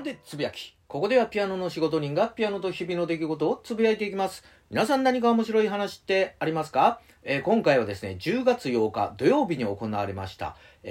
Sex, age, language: male, 40-59, Japanese